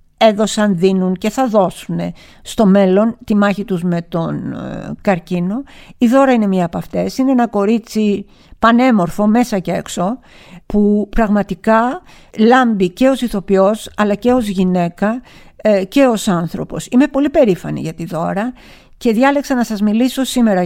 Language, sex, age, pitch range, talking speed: Greek, female, 50-69, 190-240 Hz, 150 wpm